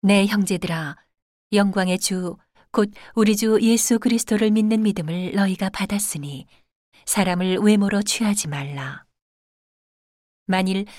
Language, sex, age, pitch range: Korean, female, 40-59, 170-205 Hz